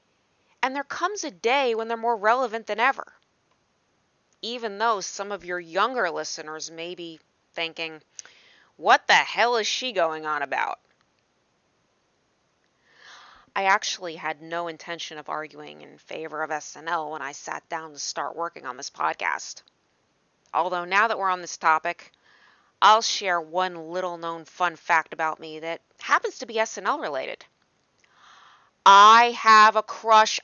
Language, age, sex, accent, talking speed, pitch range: English, 30-49, female, American, 150 wpm, 165-220 Hz